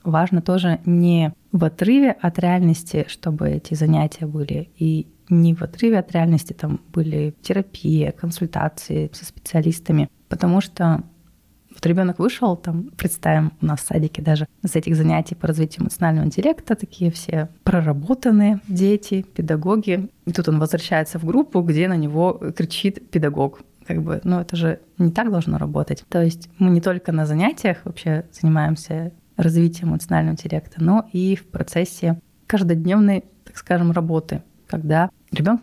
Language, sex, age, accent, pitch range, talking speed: Russian, female, 20-39, native, 160-185 Hz, 150 wpm